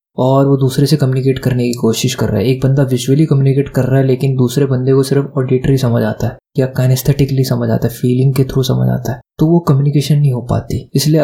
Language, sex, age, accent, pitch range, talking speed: Hindi, male, 20-39, native, 130-150 Hz, 240 wpm